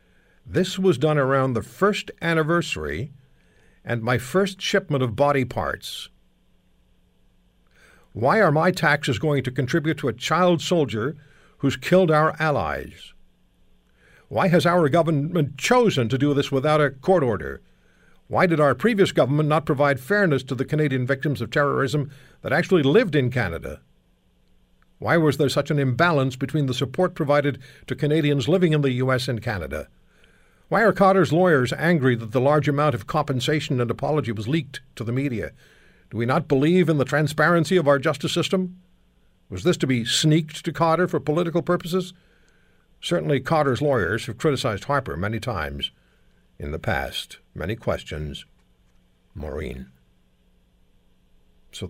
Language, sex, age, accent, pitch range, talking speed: English, male, 60-79, American, 120-165 Hz, 155 wpm